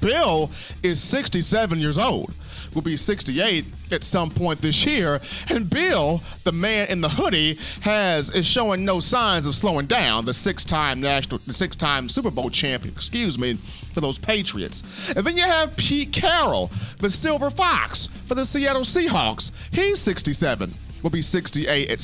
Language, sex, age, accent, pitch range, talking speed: English, male, 40-59, American, 150-245 Hz, 165 wpm